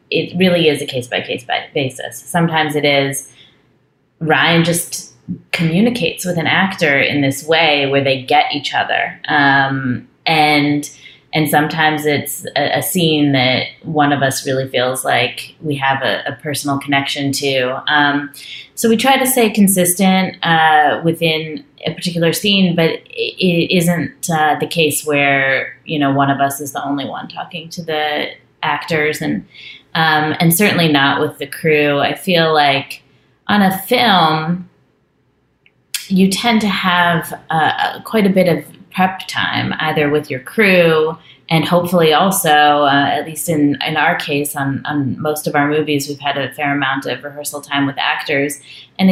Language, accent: English, American